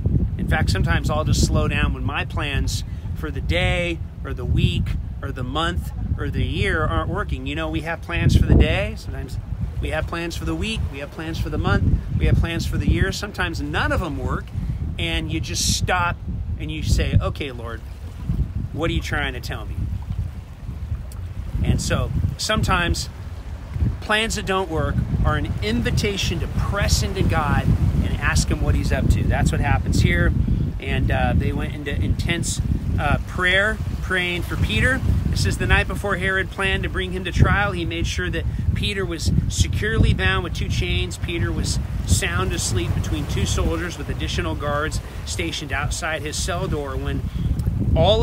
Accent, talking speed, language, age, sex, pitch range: American, 180 wpm, English, 40-59, male, 85-100 Hz